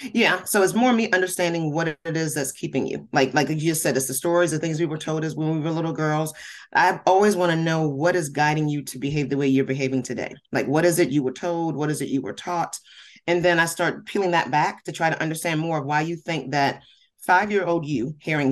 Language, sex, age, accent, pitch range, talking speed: English, female, 30-49, American, 145-175 Hz, 260 wpm